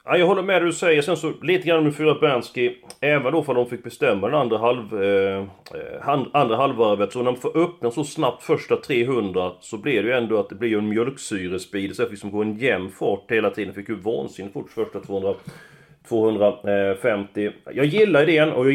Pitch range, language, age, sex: 110-150 Hz, Swedish, 30-49, male